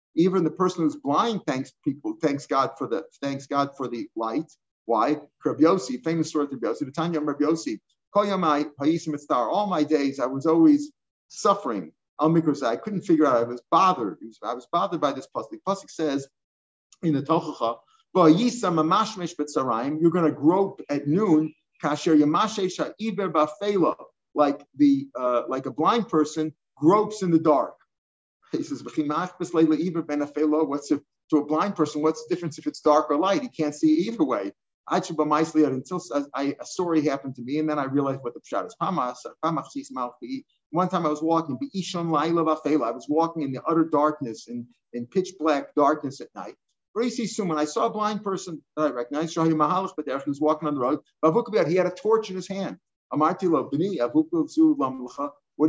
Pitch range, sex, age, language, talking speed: 145-185 Hz, male, 50-69, English, 150 wpm